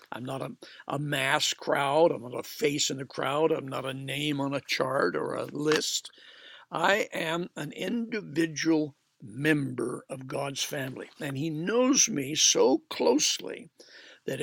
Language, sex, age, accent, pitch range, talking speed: English, male, 60-79, American, 140-180 Hz, 160 wpm